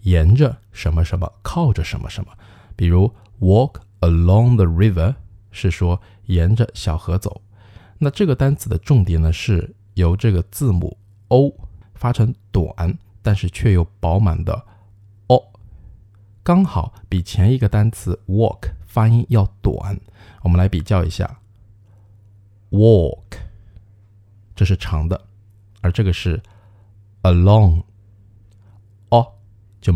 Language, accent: Chinese, native